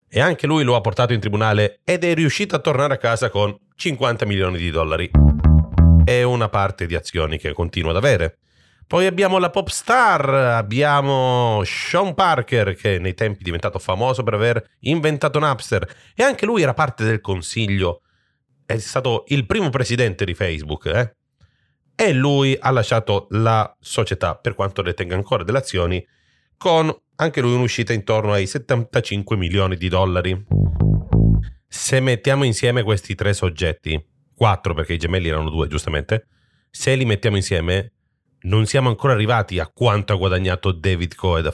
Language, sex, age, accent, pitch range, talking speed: Italian, male, 40-59, native, 95-135 Hz, 160 wpm